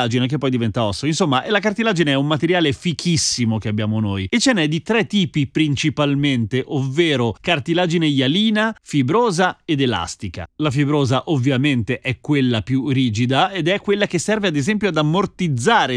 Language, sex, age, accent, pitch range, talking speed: Italian, male, 30-49, native, 120-170 Hz, 160 wpm